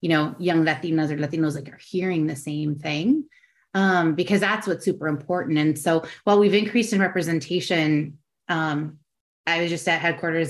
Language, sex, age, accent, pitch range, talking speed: English, female, 30-49, American, 160-190 Hz, 175 wpm